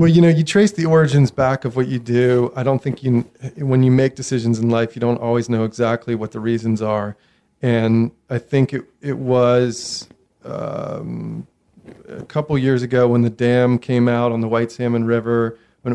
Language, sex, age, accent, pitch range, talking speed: English, male, 40-59, American, 115-130 Hz, 200 wpm